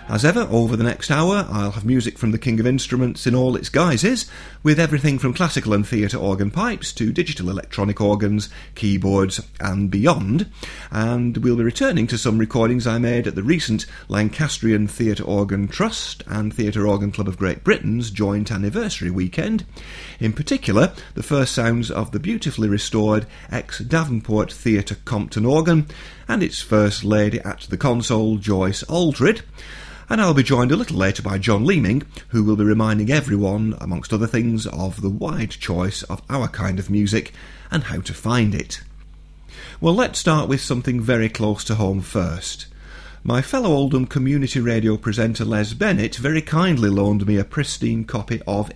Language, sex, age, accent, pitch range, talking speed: English, male, 40-59, British, 100-130 Hz, 170 wpm